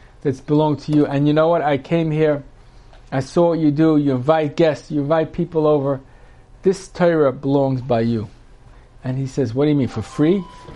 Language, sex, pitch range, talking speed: English, male, 130-165 Hz, 205 wpm